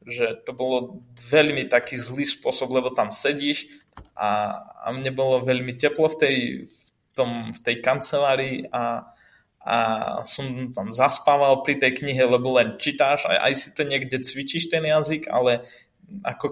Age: 20-39